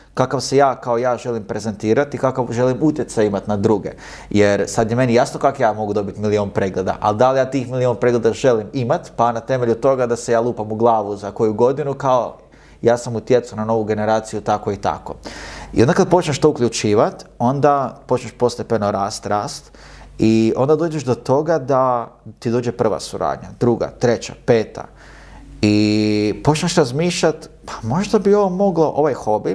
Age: 30-49